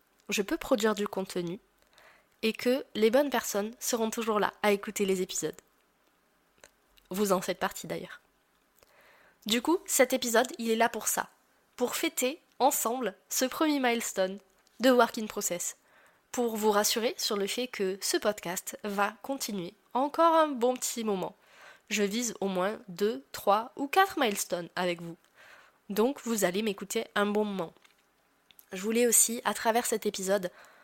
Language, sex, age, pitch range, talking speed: French, female, 20-39, 200-245 Hz, 160 wpm